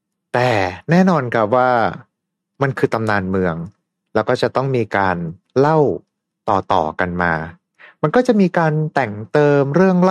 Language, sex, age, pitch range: Thai, male, 30-49, 110-155 Hz